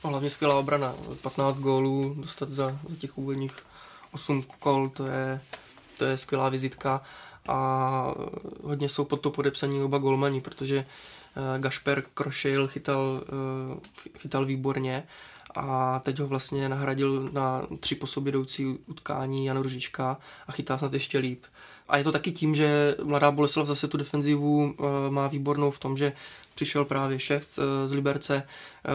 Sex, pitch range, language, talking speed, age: male, 135-145 Hz, Czech, 155 wpm, 20-39